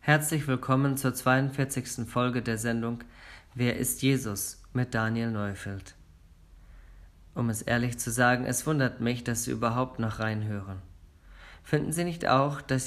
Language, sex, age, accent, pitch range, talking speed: German, male, 40-59, German, 100-135 Hz, 145 wpm